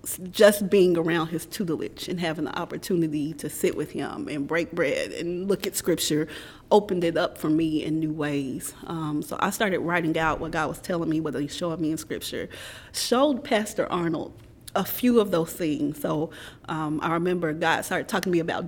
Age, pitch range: 30-49, 160-185 Hz